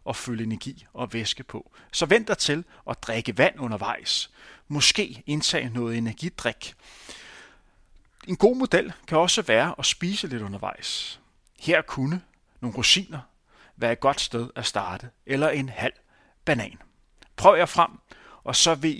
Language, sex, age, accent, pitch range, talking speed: Danish, male, 30-49, native, 115-155 Hz, 150 wpm